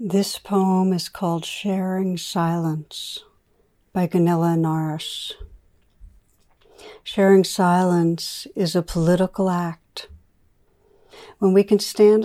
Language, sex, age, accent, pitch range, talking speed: English, female, 60-79, American, 165-195 Hz, 95 wpm